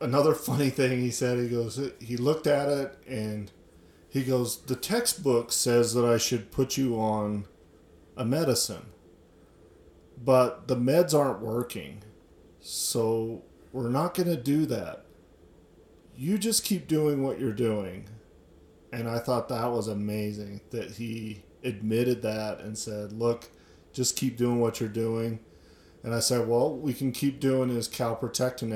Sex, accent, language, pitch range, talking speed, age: male, American, English, 105-130 Hz, 155 wpm, 40-59